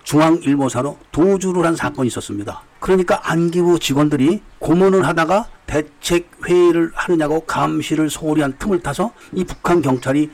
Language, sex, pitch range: Korean, male, 135-175 Hz